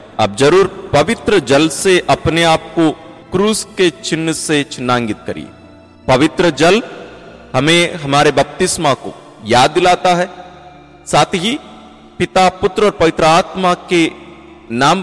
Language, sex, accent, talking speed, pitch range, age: Hindi, male, native, 130 wpm, 145-190 Hz, 40-59